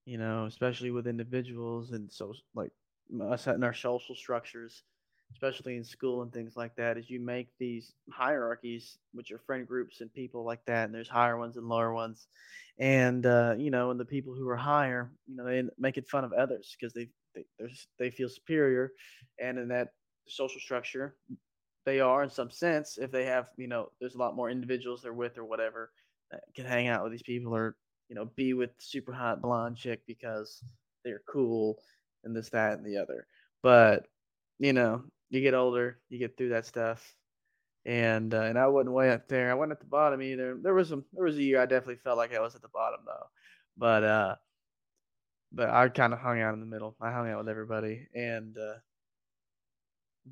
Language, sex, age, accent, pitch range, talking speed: English, male, 20-39, American, 115-130 Hz, 205 wpm